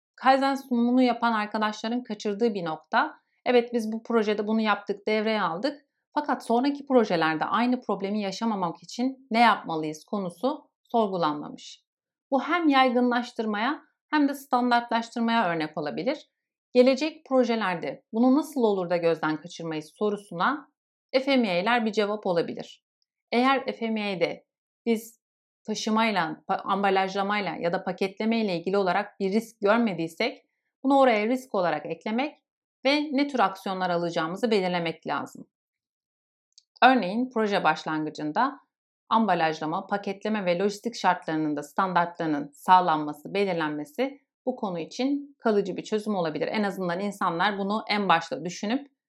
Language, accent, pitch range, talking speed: Turkish, native, 180-250 Hz, 120 wpm